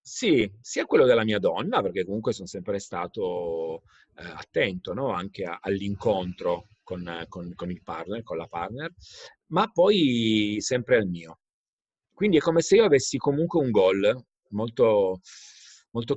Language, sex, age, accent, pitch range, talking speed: Italian, male, 40-59, native, 100-140 Hz, 140 wpm